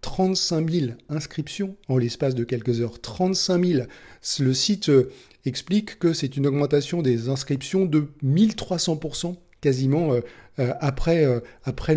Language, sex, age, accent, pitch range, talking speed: French, male, 40-59, French, 130-160 Hz, 120 wpm